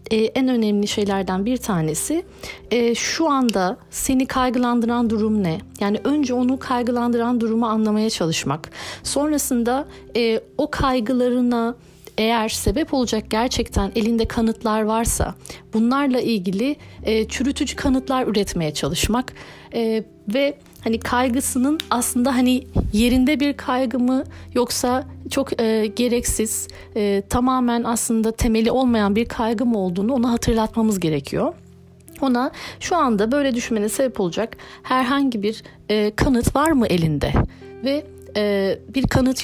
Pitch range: 210-260 Hz